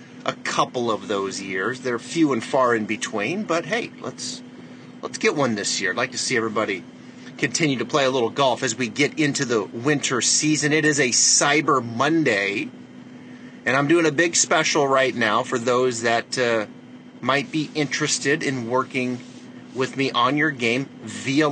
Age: 30-49